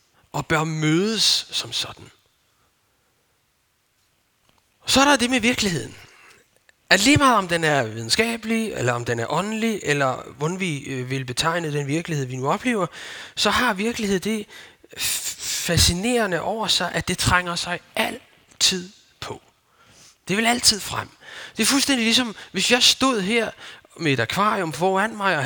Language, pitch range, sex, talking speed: Danish, 150-220 Hz, male, 150 wpm